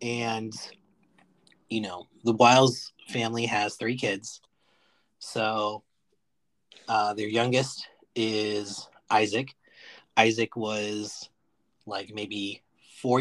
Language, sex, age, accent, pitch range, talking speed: English, male, 30-49, American, 105-130 Hz, 90 wpm